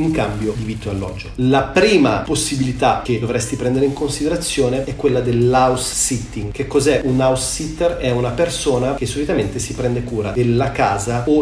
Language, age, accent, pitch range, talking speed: Italian, 30-49, native, 115-140 Hz, 180 wpm